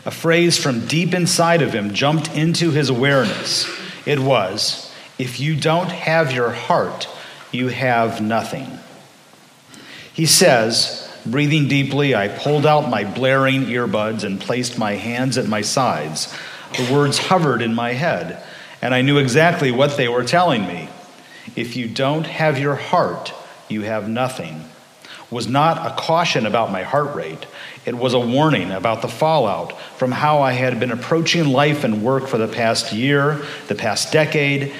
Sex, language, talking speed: male, English, 160 wpm